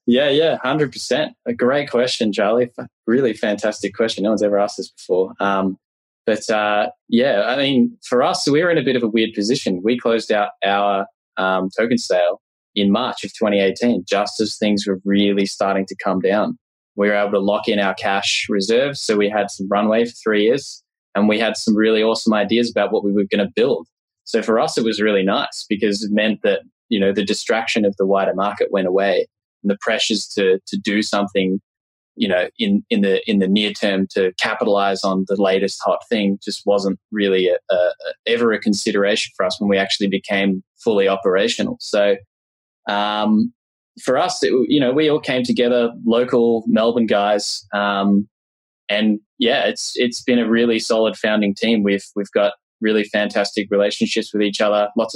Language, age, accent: English, 10-29, Australian